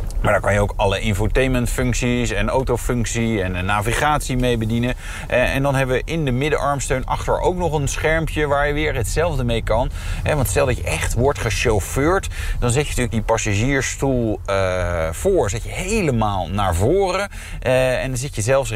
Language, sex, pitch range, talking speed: Dutch, male, 100-145 Hz, 180 wpm